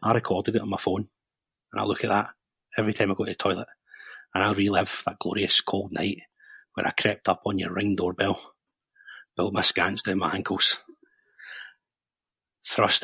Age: 30-49